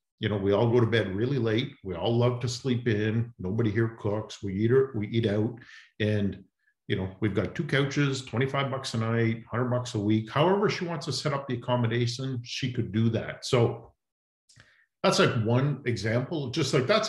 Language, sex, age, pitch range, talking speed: English, male, 50-69, 115-140 Hz, 205 wpm